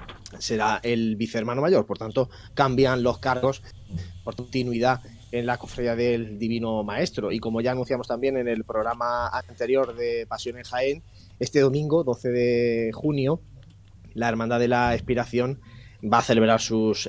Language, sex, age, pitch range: Spanish, male, 30-49, 110-130 Hz